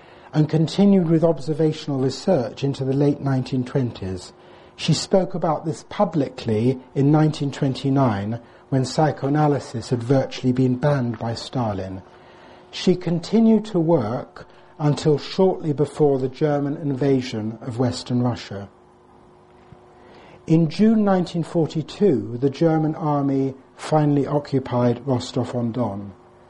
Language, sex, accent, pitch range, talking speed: English, male, British, 120-160 Hz, 105 wpm